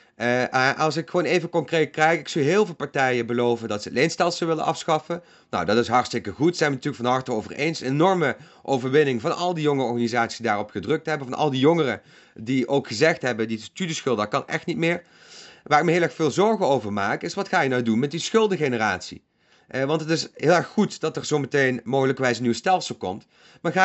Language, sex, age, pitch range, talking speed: Dutch, male, 30-49, 130-180 Hz, 235 wpm